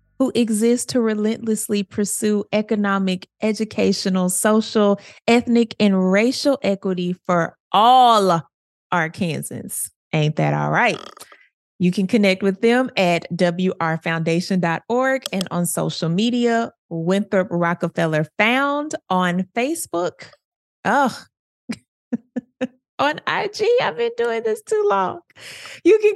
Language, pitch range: English, 175-230 Hz